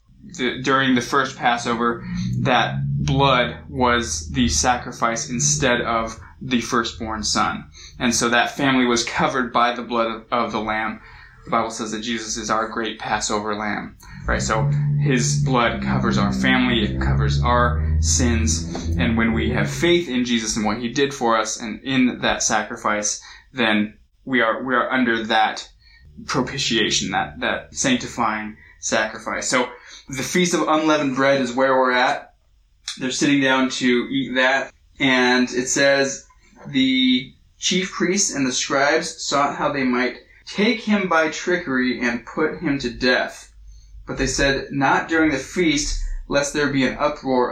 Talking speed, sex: 160 wpm, male